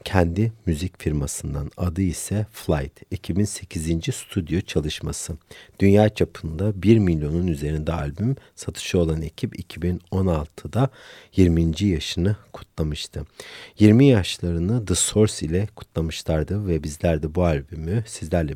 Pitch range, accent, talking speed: 80-100 Hz, native, 110 wpm